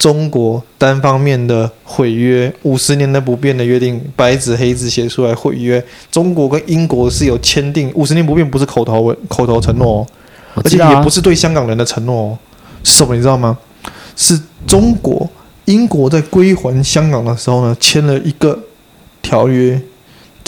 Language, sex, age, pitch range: Chinese, male, 20-39, 120-150 Hz